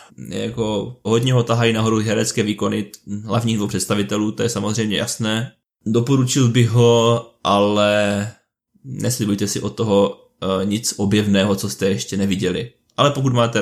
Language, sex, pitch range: Czech, male, 100-115 Hz